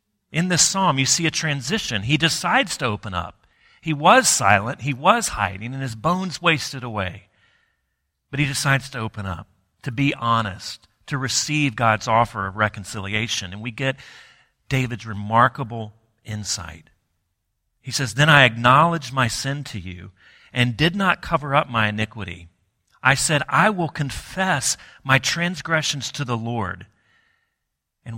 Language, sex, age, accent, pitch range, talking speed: English, male, 40-59, American, 105-135 Hz, 150 wpm